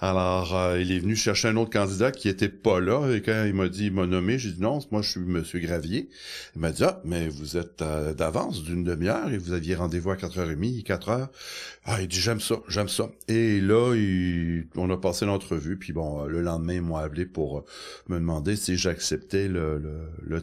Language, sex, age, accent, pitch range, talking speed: French, male, 60-79, French, 80-100 Hz, 240 wpm